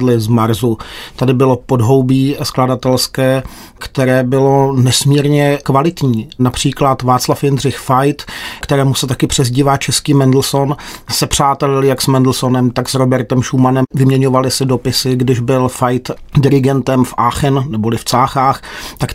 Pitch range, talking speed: 130-140 Hz, 130 wpm